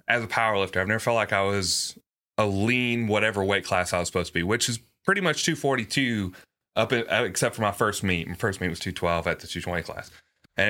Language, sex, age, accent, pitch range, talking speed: English, male, 30-49, American, 90-115 Hz, 265 wpm